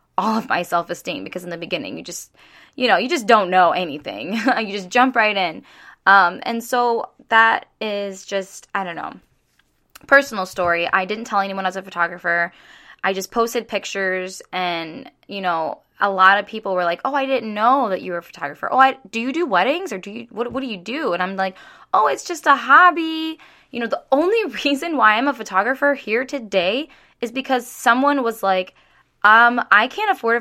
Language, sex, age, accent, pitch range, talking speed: English, female, 10-29, American, 185-255 Hz, 205 wpm